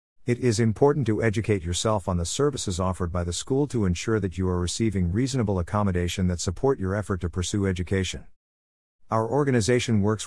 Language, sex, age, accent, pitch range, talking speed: English, male, 50-69, American, 90-115 Hz, 180 wpm